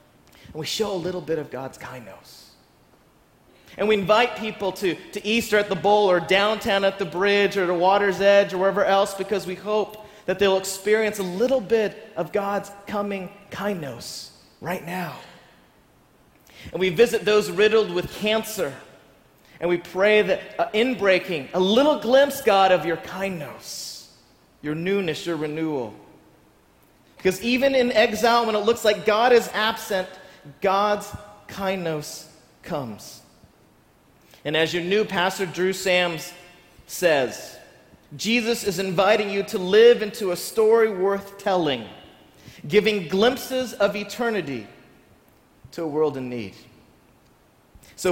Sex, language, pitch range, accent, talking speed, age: male, English, 180-220 Hz, American, 140 wpm, 30-49